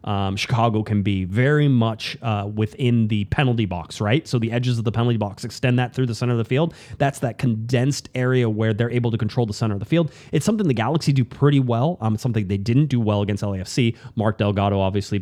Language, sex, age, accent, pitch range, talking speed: English, male, 30-49, American, 105-135 Hz, 235 wpm